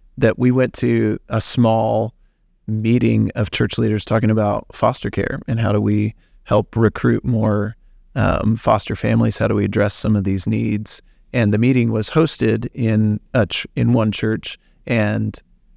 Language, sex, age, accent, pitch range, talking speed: English, male, 30-49, American, 105-115 Hz, 165 wpm